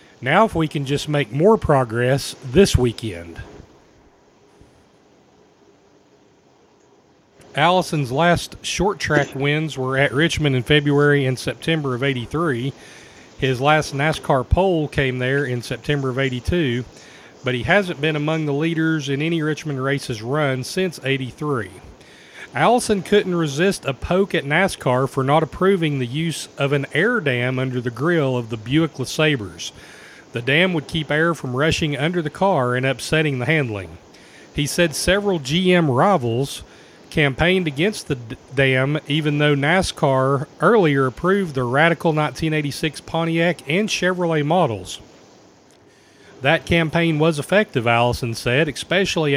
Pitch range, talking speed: 130-165 Hz, 135 wpm